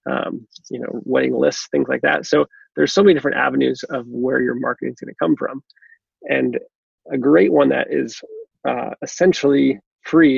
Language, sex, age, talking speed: English, male, 30-49, 185 wpm